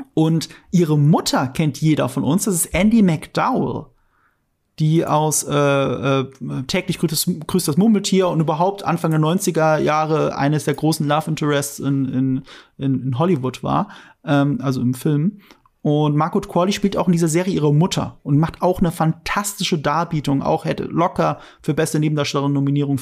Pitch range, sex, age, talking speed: 145-180 Hz, male, 30-49, 160 wpm